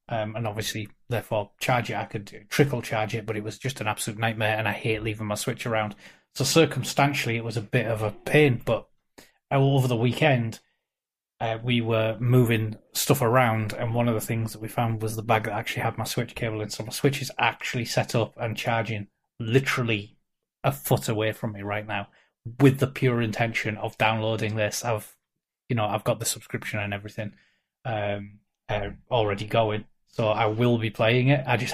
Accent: British